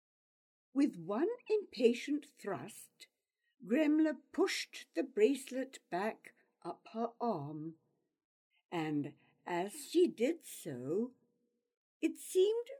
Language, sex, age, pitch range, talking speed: English, female, 60-79, 205-345 Hz, 90 wpm